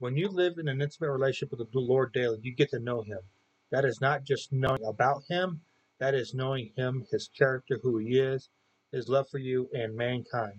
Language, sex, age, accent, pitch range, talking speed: English, male, 30-49, American, 115-140 Hz, 215 wpm